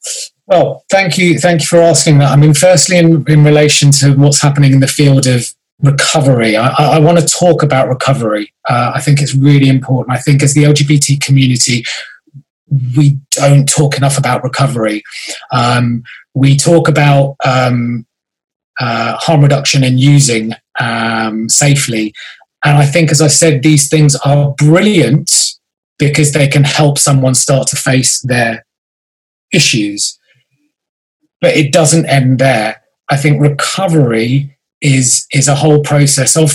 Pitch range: 125-150 Hz